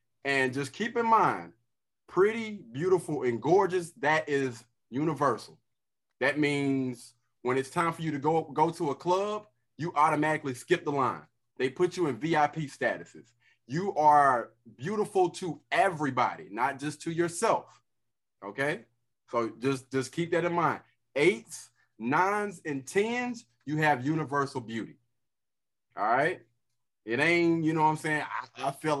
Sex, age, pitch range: male, 30-49, 125-170 Hz